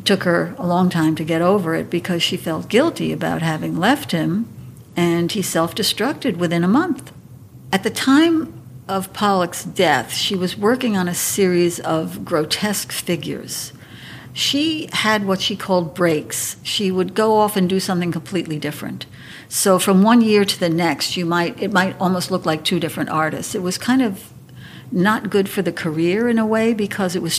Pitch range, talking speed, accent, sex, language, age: 165-210 Hz, 185 wpm, American, female, English, 60-79